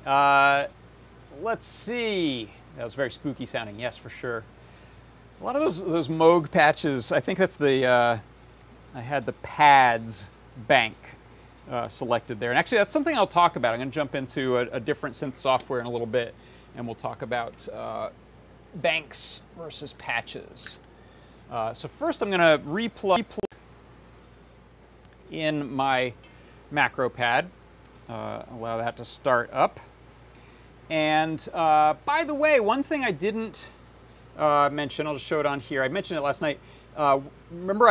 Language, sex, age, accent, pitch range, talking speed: English, male, 40-59, American, 125-175 Hz, 160 wpm